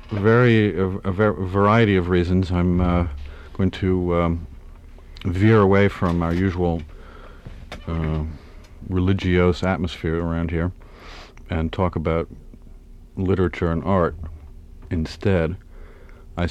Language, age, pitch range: English, 50-69, 80-95 Hz